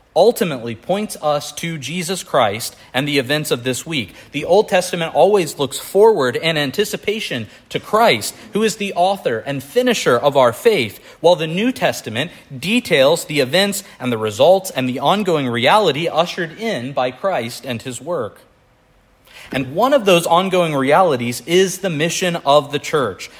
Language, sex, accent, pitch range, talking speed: English, male, American, 130-185 Hz, 165 wpm